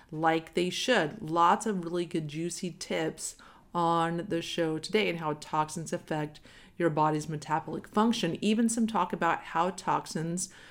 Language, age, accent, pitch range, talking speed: English, 40-59, American, 160-205 Hz, 150 wpm